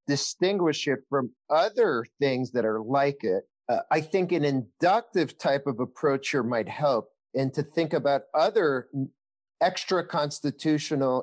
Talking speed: 145 wpm